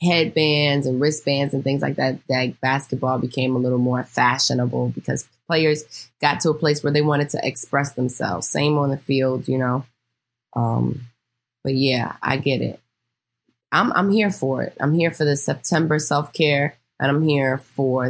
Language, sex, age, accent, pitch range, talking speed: English, female, 20-39, American, 130-170 Hz, 175 wpm